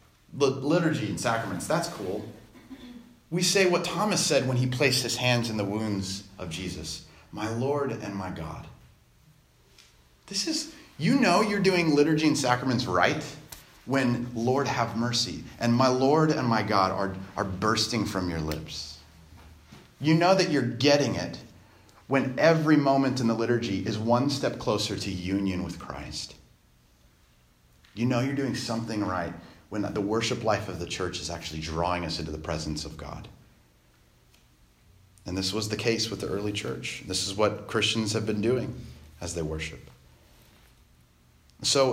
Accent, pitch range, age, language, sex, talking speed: American, 85-130 Hz, 30-49, English, male, 160 wpm